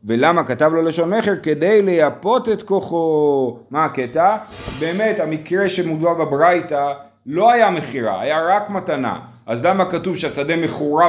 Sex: male